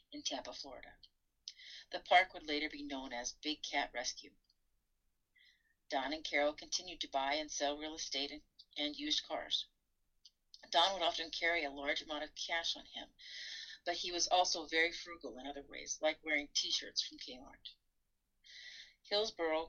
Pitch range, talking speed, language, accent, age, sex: 145-185 Hz, 160 wpm, English, American, 40-59, female